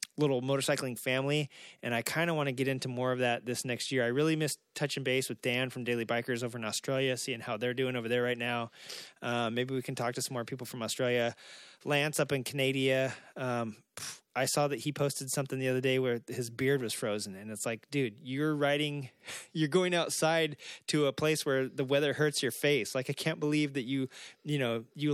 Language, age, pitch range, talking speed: English, 20-39, 125-150 Hz, 225 wpm